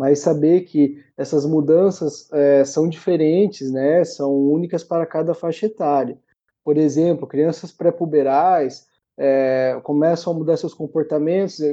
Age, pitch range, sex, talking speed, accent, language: 20-39, 145-170 Hz, male, 120 wpm, Brazilian, Portuguese